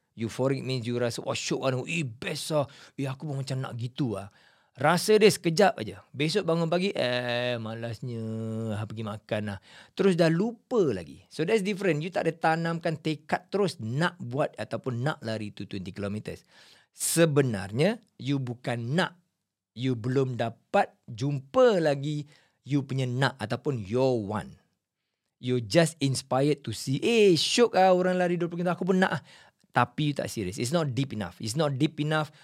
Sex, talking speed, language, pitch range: male, 160 wpm, Malay, 115-170 Hz